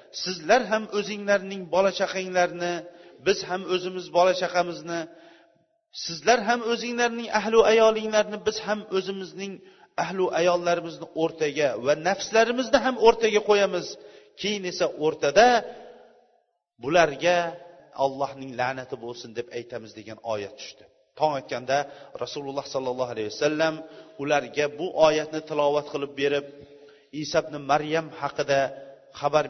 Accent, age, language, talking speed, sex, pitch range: Turkish, 40-59, Russian, 110 wpm, male, 135-190 Hz